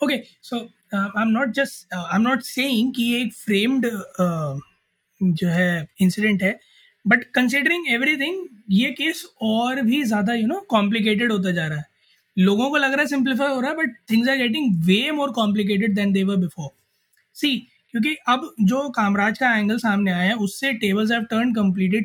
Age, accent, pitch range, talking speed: 20-39, native, 195-240 Hz, 180 wpm